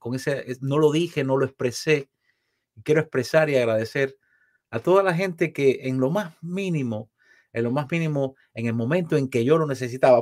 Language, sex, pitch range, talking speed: Spanish, male, 125-165 Hz, 195 wpm